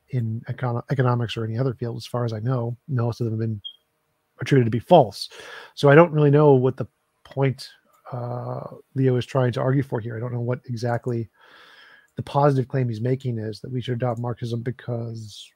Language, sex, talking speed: English, male, 205 wpm